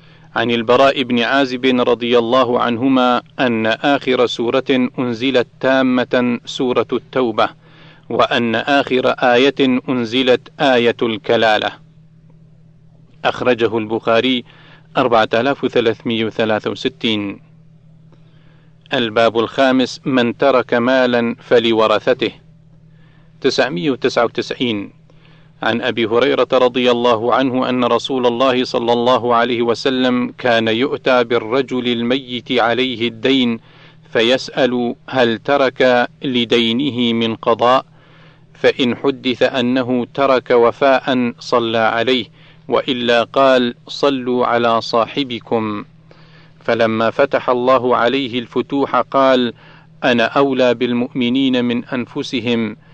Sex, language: male, Arabic